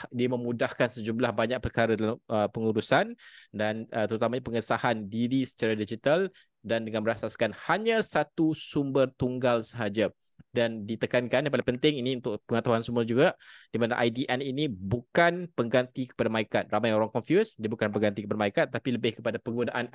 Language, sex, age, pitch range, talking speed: Malay, male, 20-39, 110-135 Hz, 155 wpm